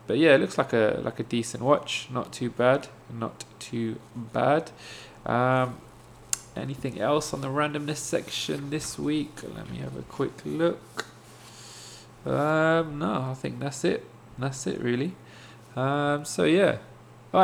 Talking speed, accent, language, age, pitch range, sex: 150 wpm, British, English, 20-39, 115-135 Hz, male